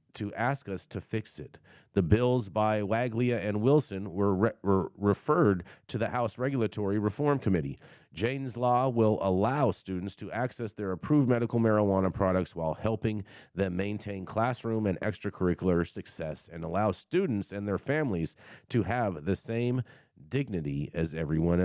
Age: 40-59